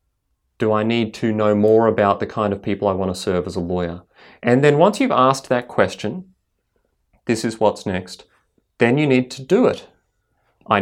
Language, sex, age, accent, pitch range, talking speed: English, male, 30-49, Australian, 100-120 Hz, 200 wpm